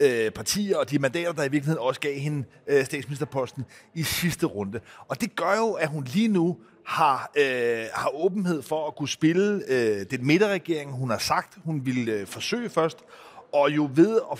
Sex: male